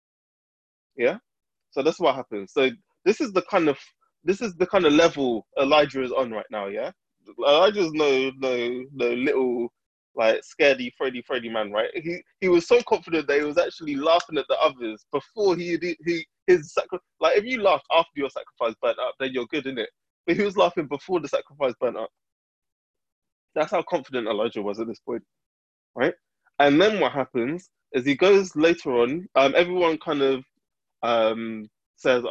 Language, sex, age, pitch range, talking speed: English, male, 20-39, 120-175 Hz, 185 wpm